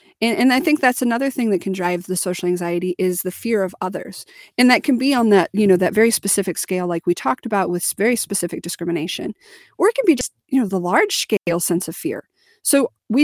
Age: 40-59